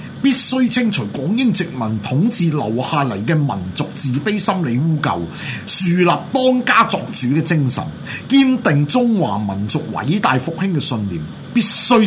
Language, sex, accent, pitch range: Chinese, male, native, 155-225 Hz